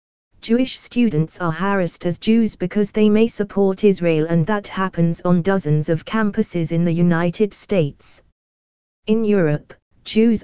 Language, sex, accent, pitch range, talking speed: English, female, British, 160-210 Hz, 145 wpm